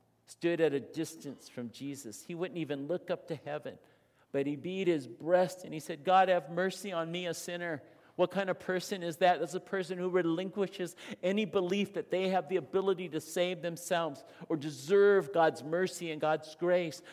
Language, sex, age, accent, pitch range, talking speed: English, male, 50-69, American, 125-180 Hz, 195 wpm